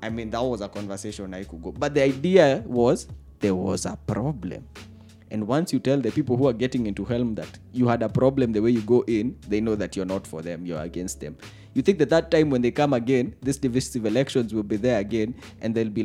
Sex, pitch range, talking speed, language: male, 105-135 Hz, 250 wpm, English